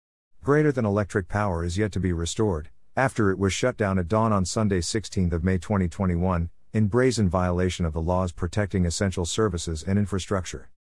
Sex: male